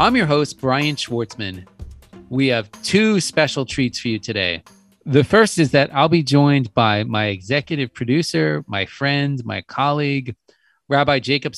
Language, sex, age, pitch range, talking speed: English, male, 30-49, 120-150 Hz, 155 wpm